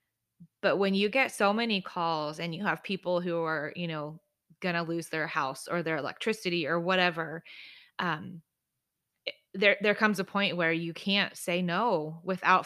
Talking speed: 175 wpm